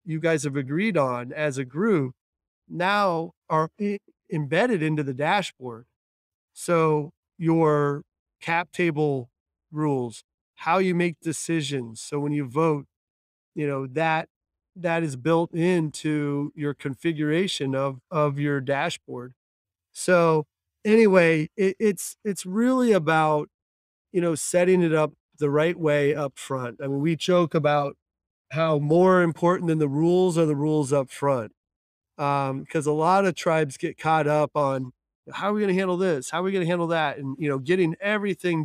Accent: American